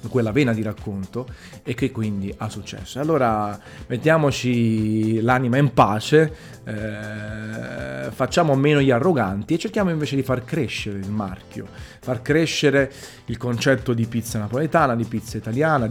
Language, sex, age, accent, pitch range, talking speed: Italian, male, 30-49, native, 115-140 Hz, 140 wpm